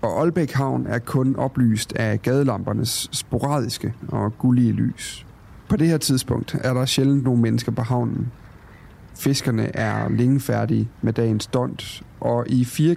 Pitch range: 110-135 Hz